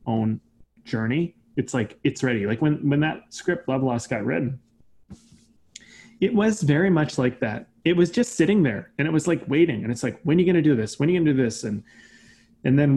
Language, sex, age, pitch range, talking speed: English, male, 30-49, 120-155 Hz, 235 wpm